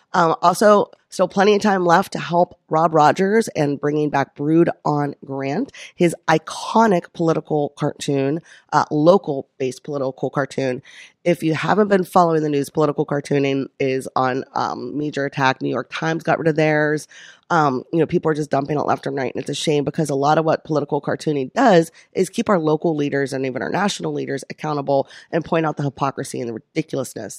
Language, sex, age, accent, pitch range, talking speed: English, female, 30-49, American, 145-175 Hz, 195 wpm